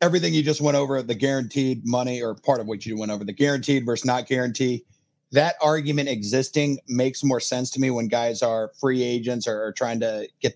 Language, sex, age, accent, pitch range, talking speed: English, male, 40-59, American, 120-145 Hz, 200 wpm